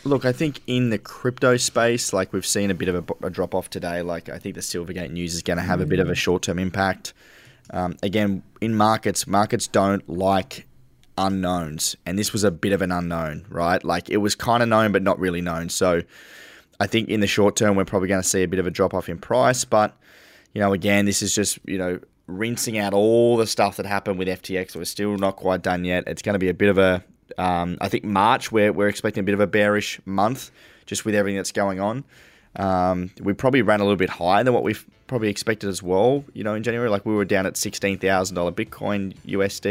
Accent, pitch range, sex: Australian, 90-105 Hz, male